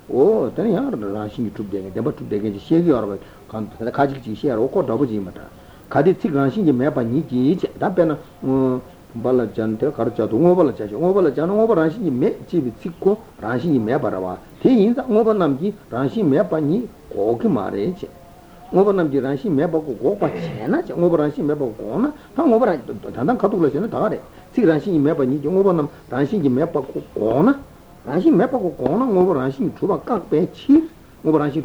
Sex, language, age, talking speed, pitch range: male, Italian, 60-79, 145 wpm, 120-195 Hz